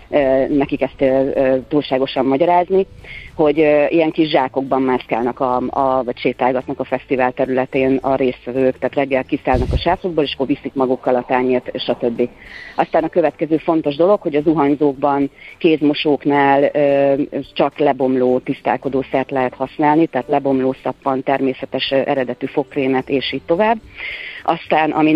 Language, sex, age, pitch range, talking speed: Hungarian, female, 40-59, 130-155 Hz, 130 wpm